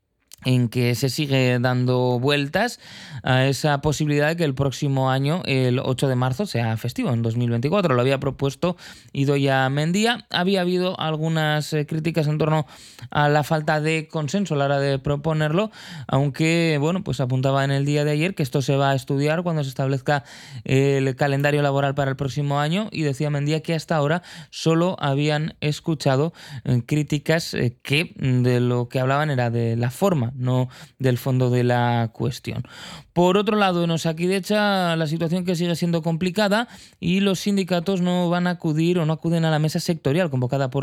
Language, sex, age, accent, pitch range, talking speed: Spanish, male, 20-39, Spanish, 135-170 Hz, 175 wpm